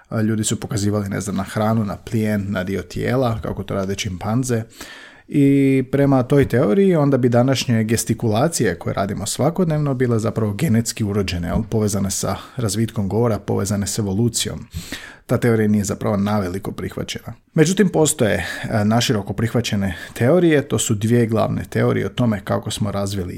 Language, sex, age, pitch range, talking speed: Croatian, male, 40-59, 110-145 Hz, 150 wpm